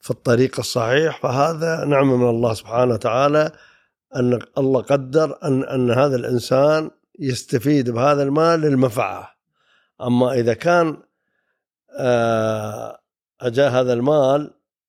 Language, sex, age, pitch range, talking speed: Arabic, male, 50-69, 125-155 Hz, 105 wpm